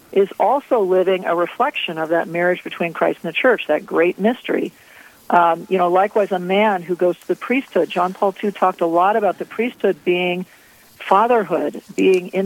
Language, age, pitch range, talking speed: English, 50-69, 170-205 Hz, 195 wpm